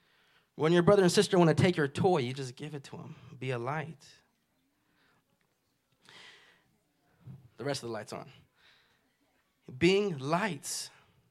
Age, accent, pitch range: 20-39, American, 140-170 Hz